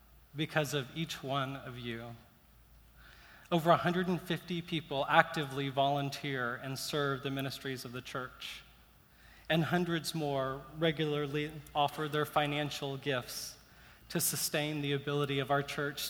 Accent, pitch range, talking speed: American, 140-175 Hz, 125 wpm